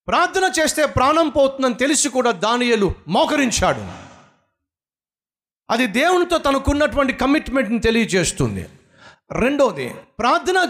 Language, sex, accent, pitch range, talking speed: Telugu, male, native, 195-270 Hz, 85 wpm